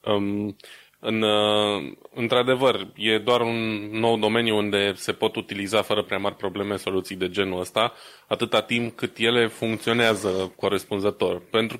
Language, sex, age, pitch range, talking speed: Romanian, male, 20-39, 95-115 Hz, 130 wpm